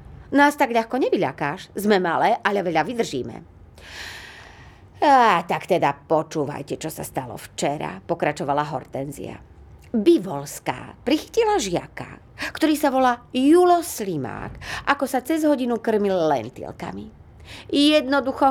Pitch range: 165-245 Hz